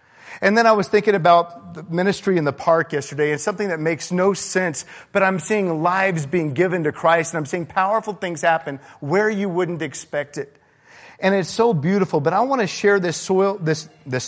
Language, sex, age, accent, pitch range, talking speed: English, male, 40-59, American, 120-175 Hz, 210 wpm